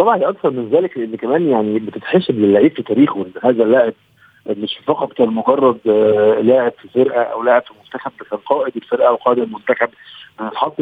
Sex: male